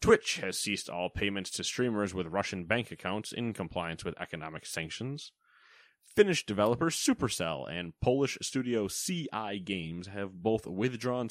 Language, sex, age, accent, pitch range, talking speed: English, male, 20-39, American, 90-120 Hz, 145 wpm